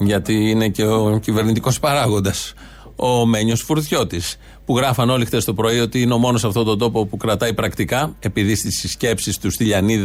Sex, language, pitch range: male, Greek, 115-150 Hz